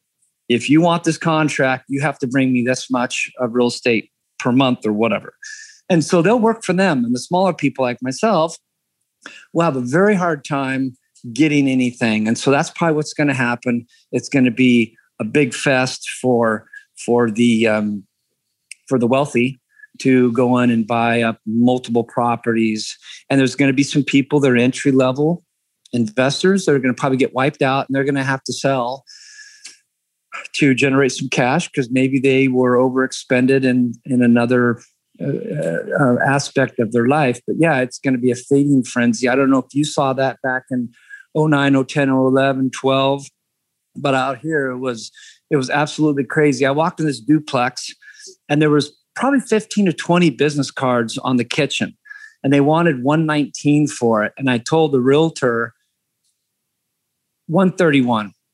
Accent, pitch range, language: American, 125-155 Hz, English